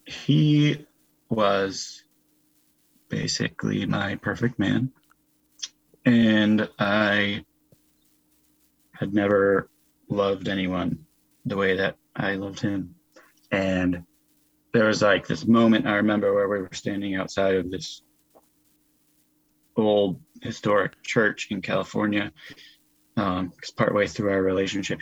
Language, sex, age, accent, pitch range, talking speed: English, male, 30-49, American, 95-115 Hz, 105 wpm